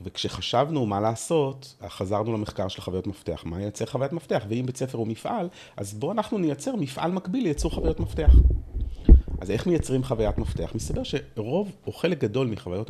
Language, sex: Hebrew, male